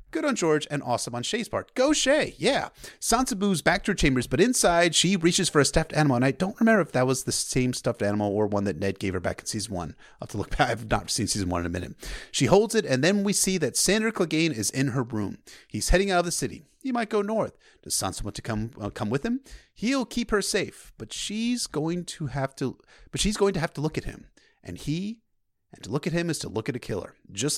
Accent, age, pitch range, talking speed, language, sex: American, 30-49, 120-190 Hz, 275 wpm, English, male